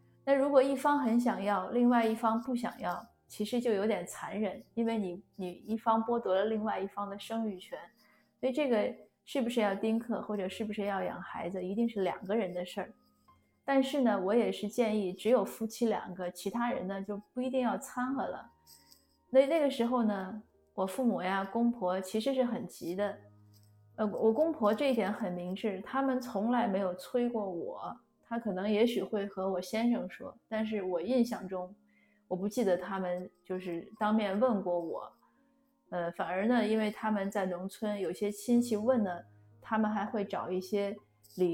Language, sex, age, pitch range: Chinese, female, 20-39, 185-230 Hz